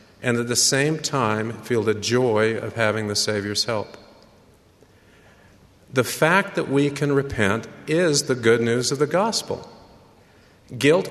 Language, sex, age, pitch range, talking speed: English, male, 50-69, 110-140 Hz, 145 wpm